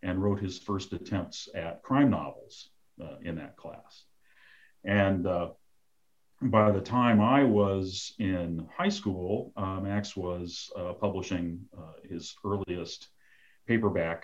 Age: 40-59